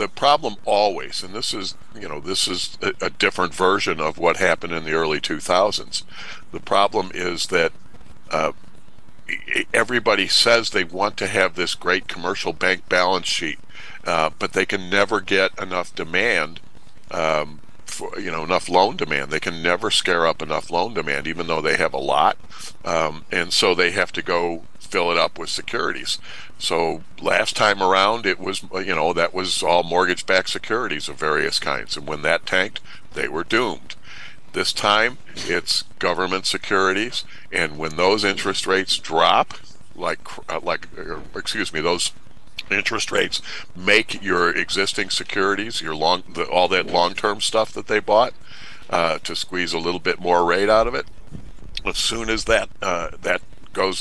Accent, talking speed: American, 170 wpm